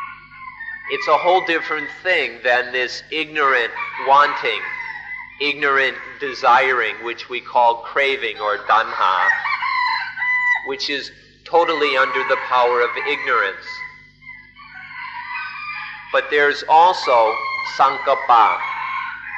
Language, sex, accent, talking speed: English, male, American, 90 wpm